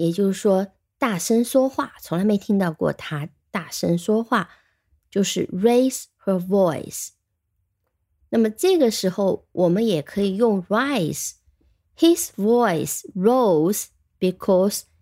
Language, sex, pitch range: Chinese, female, 170-245 Hz